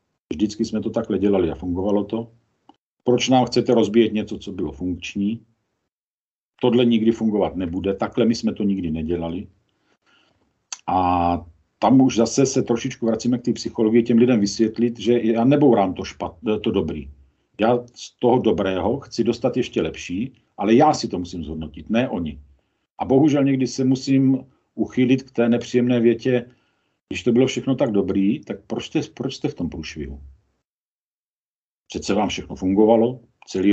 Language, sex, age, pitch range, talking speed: Czech, male, 50-69, 100-125 Hz, 160 wpm